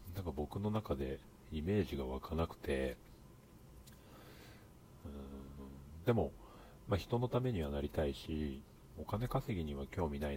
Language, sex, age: Japanese, male, 40-59